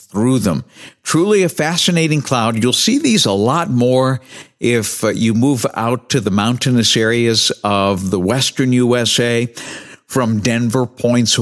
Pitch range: 105-130 Hz